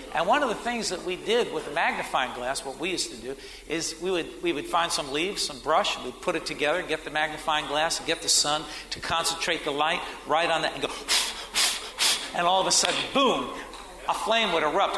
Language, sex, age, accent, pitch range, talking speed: English, male, 50-69, American, 155-205 Hz, 240 wpm